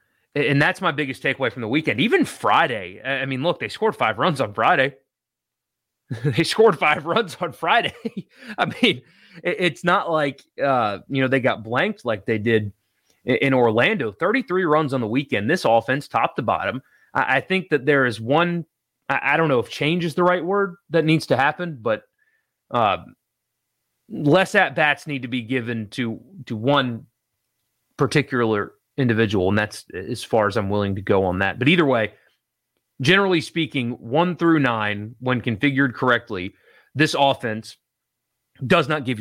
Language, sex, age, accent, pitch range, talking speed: English, male, 30-49, American, 115-170 Hz, 175 wpm